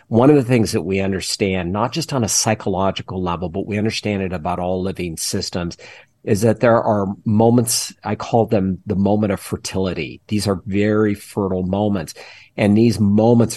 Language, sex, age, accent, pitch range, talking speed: English, male, 50-69, American, 95-115 Hz, 180 wpm